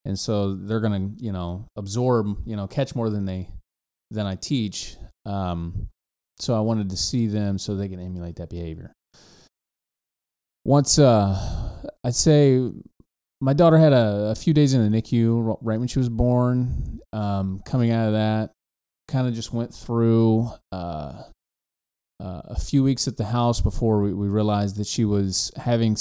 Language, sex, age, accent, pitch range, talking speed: English, male, 30-49, American, 95-120 Hz, 170 wpm